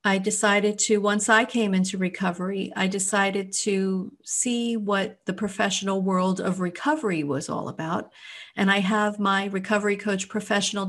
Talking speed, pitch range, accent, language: 155 wpm, 190-225 Hz, American, English